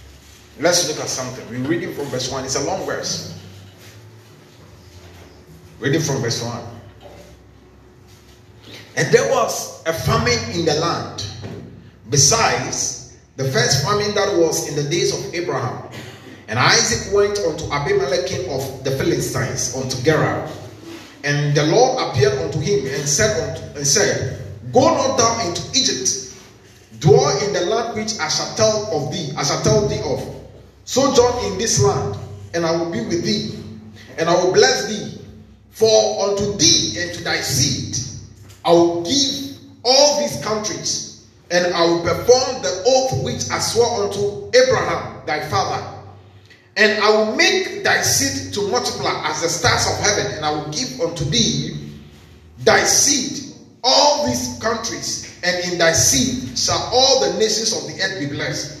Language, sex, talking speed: English, male, 160 wpm